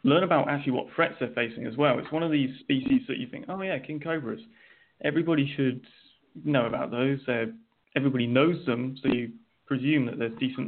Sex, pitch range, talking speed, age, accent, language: male, 115-140 Hz, 200 wpm, 20-39, British, English